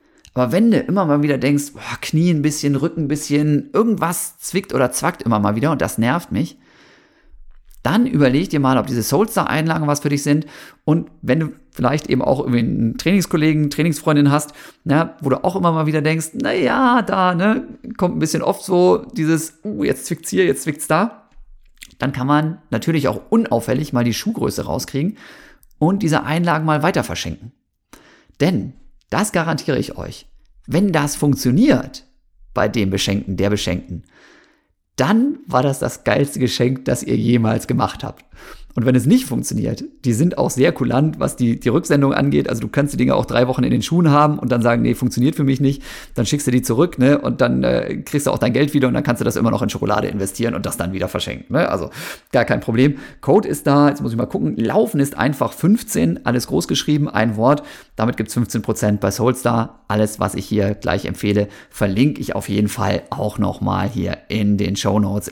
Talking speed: 205 wpm